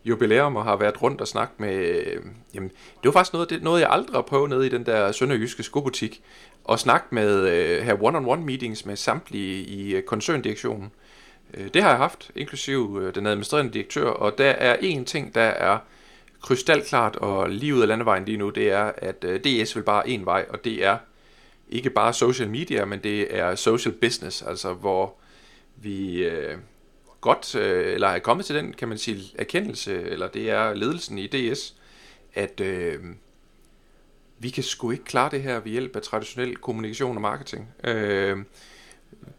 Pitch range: 100-140 Hz